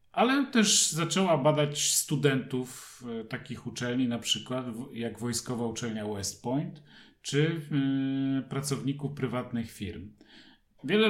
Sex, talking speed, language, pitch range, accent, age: male, 105 wpm, Polish, 115-145 Hz, native, 40-59